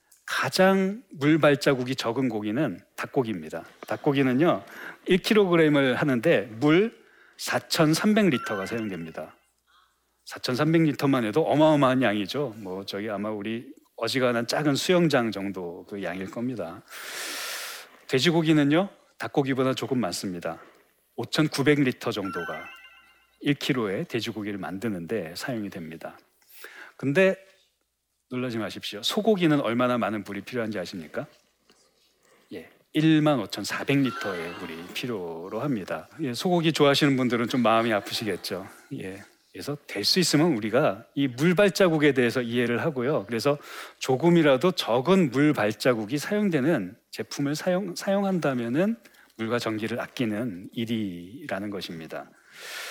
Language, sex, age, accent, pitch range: Korean, male, 40-59, native, 115-160 Hz